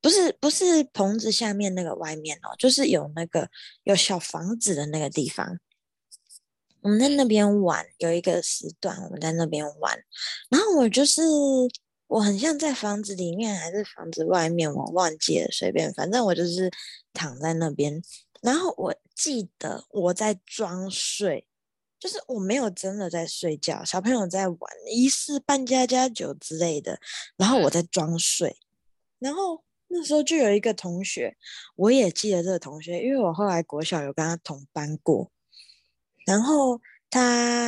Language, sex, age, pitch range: Chinese, female, 20-39, 170-255 Hz